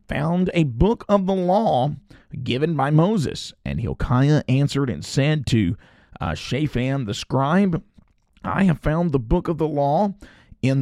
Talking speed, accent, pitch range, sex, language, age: 155 wpm, American, 115-160 Hz, male, English, 40-59